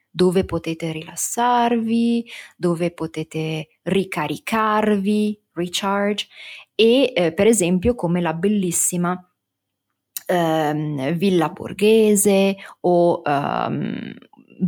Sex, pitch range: female, 160-205 Hz